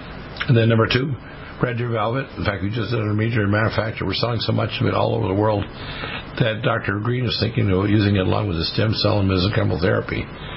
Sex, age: male, 60-79